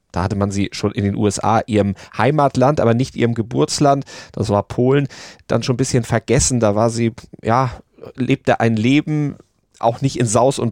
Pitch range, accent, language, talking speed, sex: 105-125 Hz, German, German, 190 wpm, male